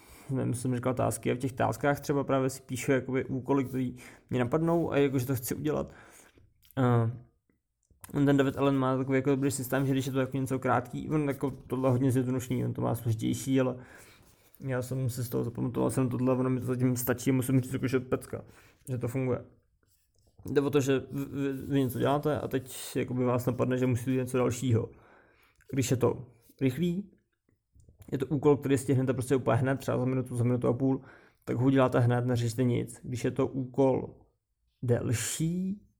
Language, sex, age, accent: Czech, male, 20-39, native